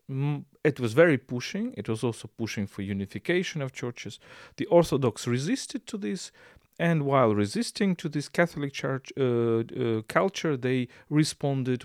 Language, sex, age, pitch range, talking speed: English, male, 40-59, 115-150 Hz, 145 wpm